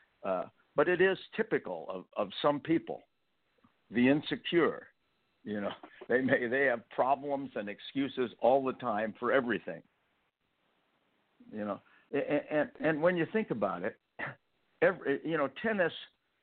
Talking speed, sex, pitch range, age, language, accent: 145 wpm, male, 115-160 Hz, 60-79, English, American